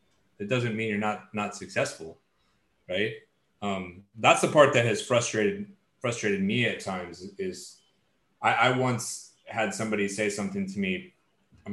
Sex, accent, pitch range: male, American, 120-185 Hz